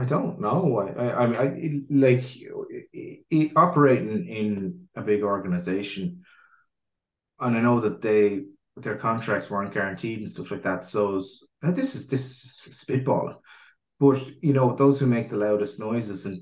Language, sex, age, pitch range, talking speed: English, male, 30-49, 105-135 Hz, 170 wpm